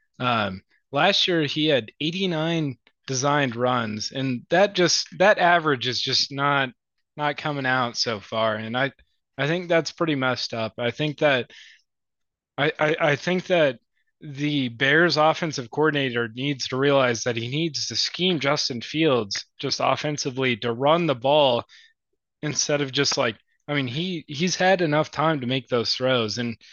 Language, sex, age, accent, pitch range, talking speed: English, male, 20-39, American, 125-165 Hz, 165 wpm